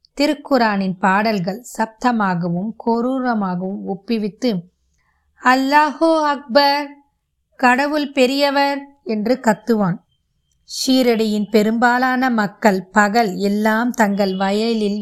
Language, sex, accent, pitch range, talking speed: Tamil, female, native, 200-255 Hz, 70 wpm